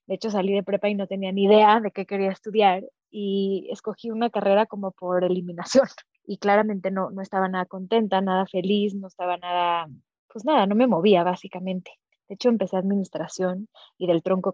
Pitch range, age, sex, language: 185-215 Hz, 20-39, female, Spanish